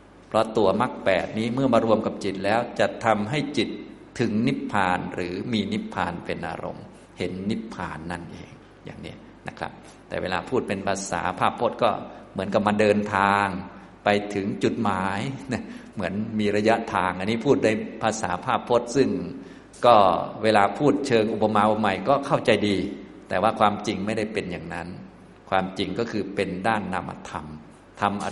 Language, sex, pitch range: Thai, male, 90-110 Hz